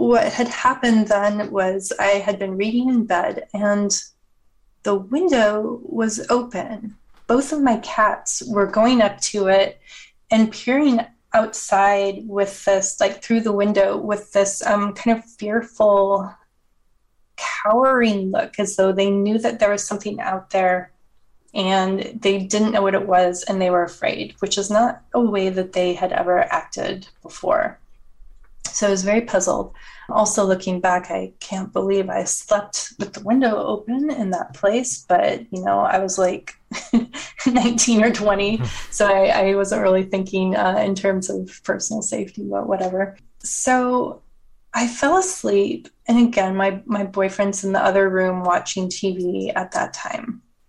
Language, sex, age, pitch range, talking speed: English, female, 20-39, 195-230 Hz, 160 wpm